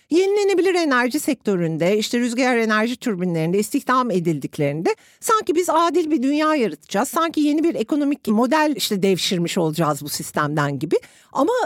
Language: Turkish